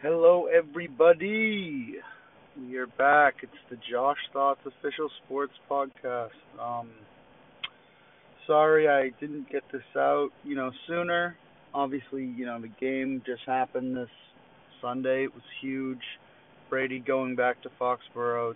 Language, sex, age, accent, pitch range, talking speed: English, male, 30-49, American, 120-145 Hz, 125 wpm